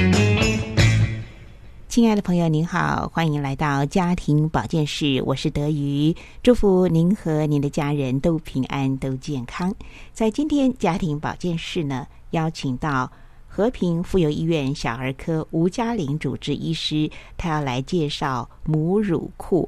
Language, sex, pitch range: Chinese, female, 135-185 Hz